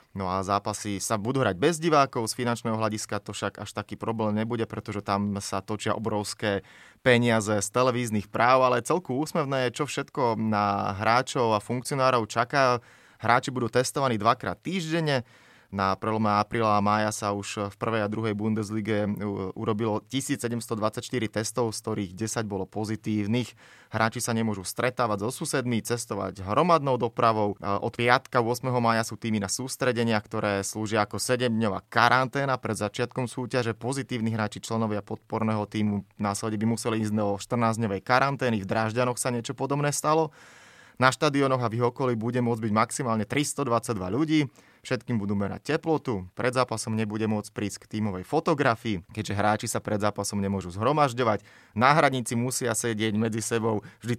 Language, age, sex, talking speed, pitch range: Slovak, 20-39, male, 155 wpm, 105-125 Hz